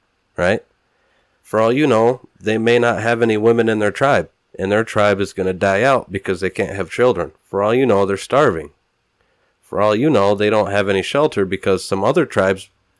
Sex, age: male, 30-49